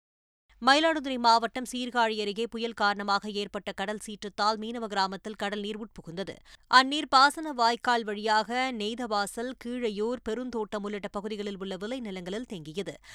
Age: 20-39